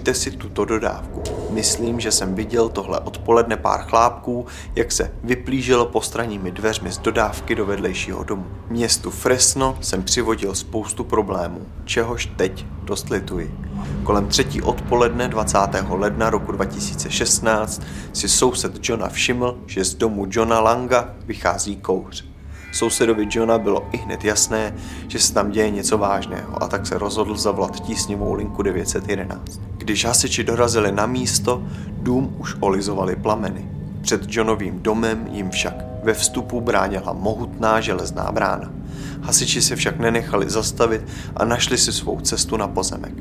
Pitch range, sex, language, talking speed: 95-115 Hz, male, Czech, 140 wpm